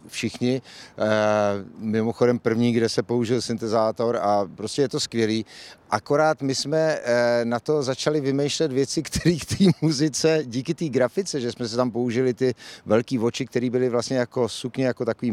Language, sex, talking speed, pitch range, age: Czech, male, 165 wpm, 120-150 Hz, 50-69